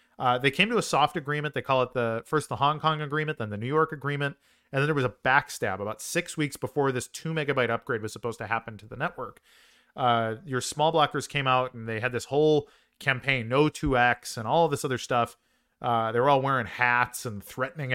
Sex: male